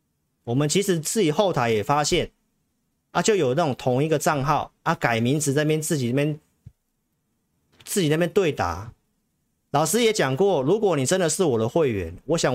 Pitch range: 120-175 Hz